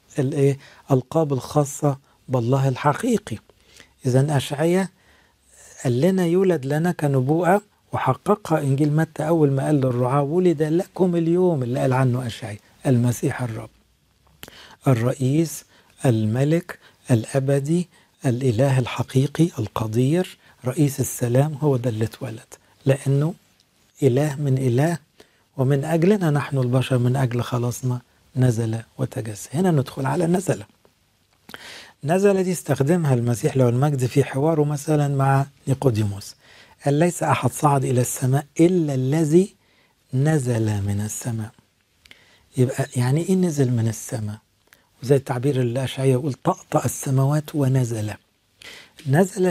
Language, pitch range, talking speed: English, 125-155 Hz, 110 wpm